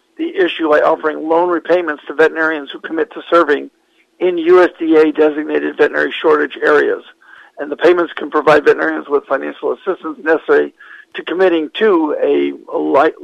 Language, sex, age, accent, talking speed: English, male, 50-69, American, 155 wpm